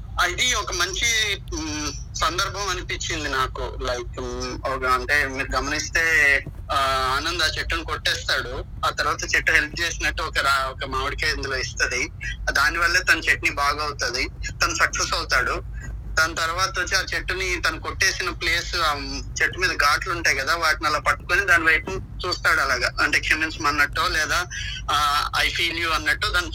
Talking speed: 140 wpm